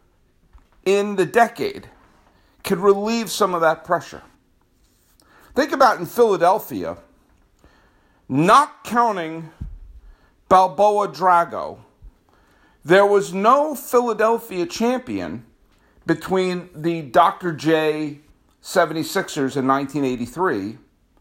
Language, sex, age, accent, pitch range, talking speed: English, male, 50-69, American, 145-200 Hz, 80 wpm